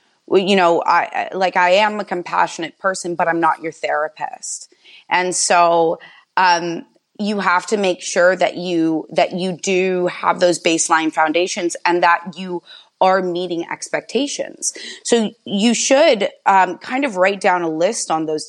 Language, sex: English, female